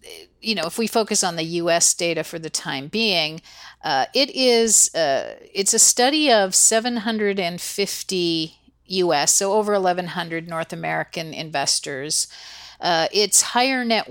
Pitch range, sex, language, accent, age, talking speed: 170-215 Hz, female, English, American, 50-69, 135 wpm